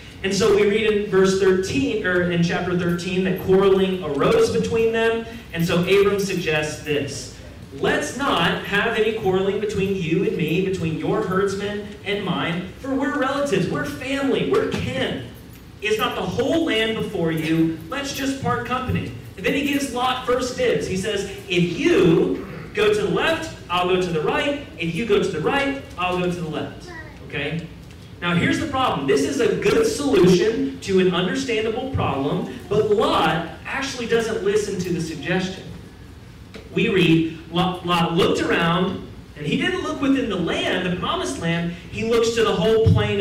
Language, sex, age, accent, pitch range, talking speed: English, male, 30-49, American, 165-225 Hz, 175 wpm